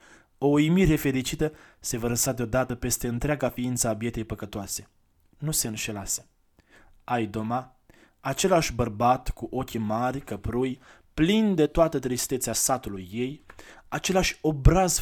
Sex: male